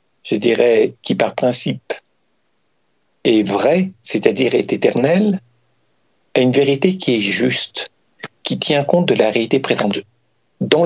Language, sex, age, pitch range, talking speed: French, male, 60-79, 120-160 Hz, 135 wpm